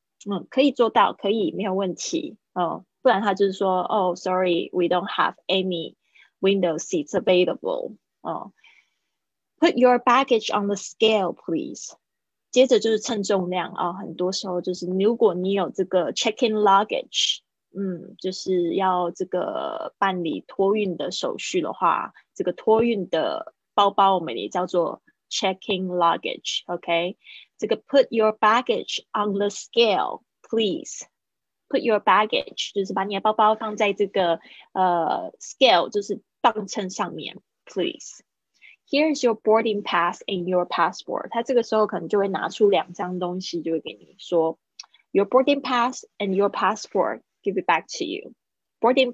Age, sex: 20-39, female